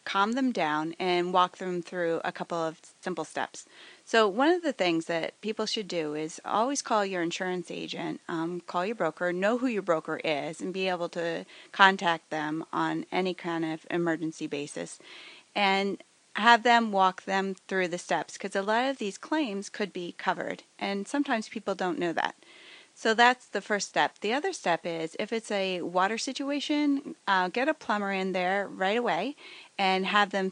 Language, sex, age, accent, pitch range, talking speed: English, female, 30-49, American, 175-220 Hz, 190 wpm